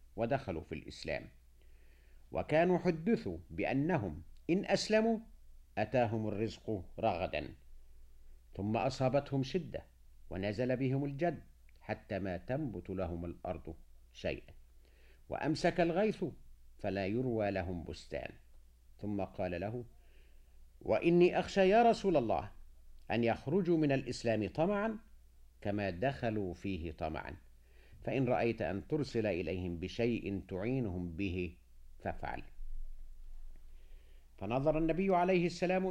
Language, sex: Arabic, male